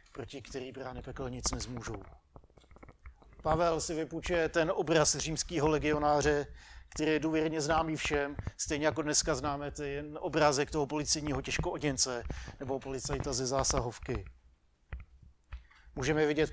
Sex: male